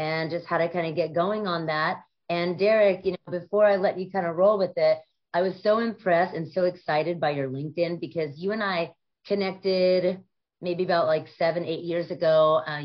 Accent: American